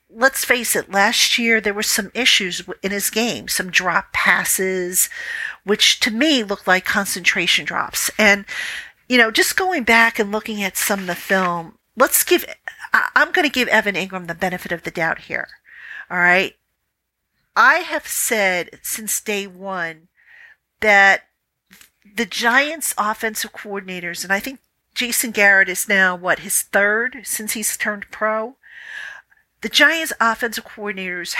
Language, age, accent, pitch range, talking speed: English, 50-69, American, 190-240 Hz, 155 wpm